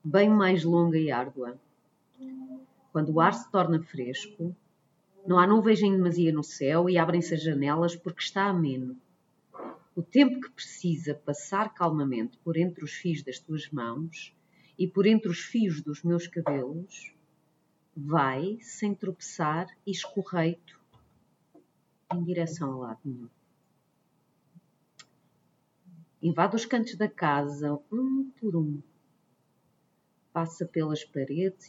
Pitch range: 155-195 Hz